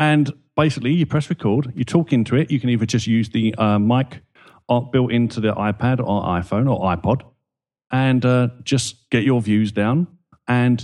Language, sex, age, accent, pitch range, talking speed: English, male, 40-59, British, 120-155 Hz, 185 wpm